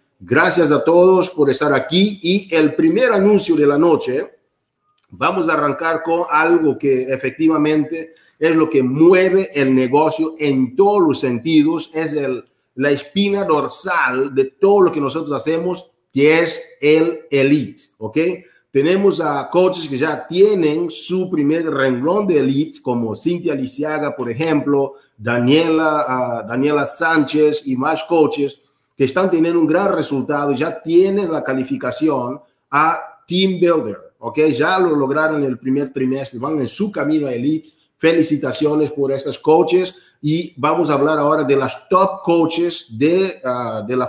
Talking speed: 155 wpm